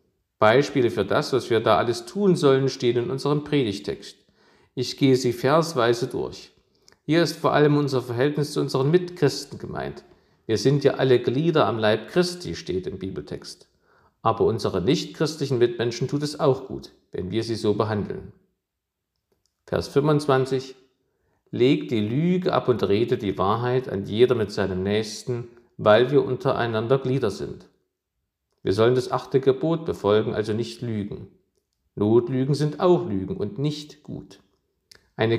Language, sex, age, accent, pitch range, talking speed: German, male, 50-69, German, 115-150 Hz, 150 wpm